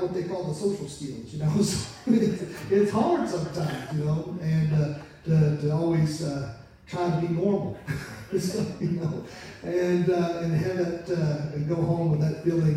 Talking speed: 185 wpm